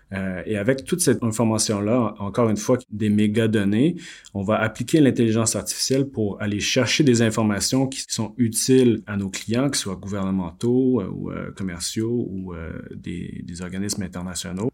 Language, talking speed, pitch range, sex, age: English, 165 wpm, 95-115 Hz, male, 30-49